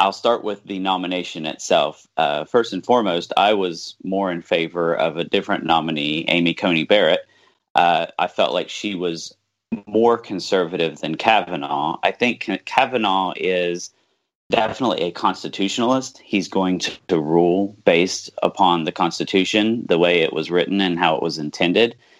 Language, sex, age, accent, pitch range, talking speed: English, male, 30-49, American, 80-95 Hz, 155 wpm